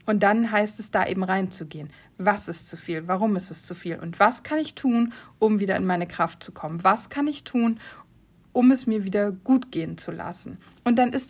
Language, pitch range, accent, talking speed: German, 190-245 Hz, German, 230 wpm